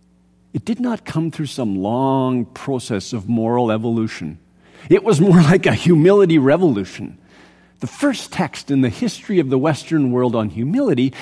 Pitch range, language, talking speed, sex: 120-180 Hz, English, 160 wpm, male